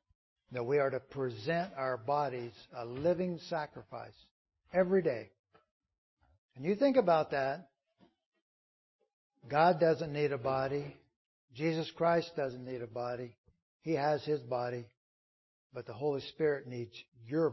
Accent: American